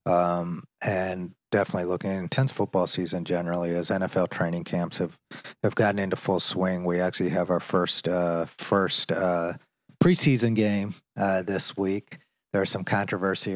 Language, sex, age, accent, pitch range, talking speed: English, male, 30-49, American, 90-100 Hz, 155 wpm